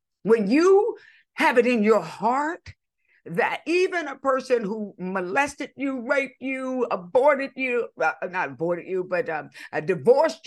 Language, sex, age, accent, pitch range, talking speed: English, female, 50-69, American, 185-275 Hz, 145 wpm